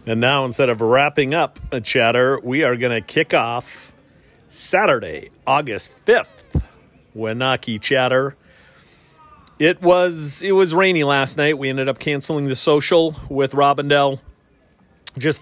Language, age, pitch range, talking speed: English, 40-59, 125-145 Hz, 135 wpm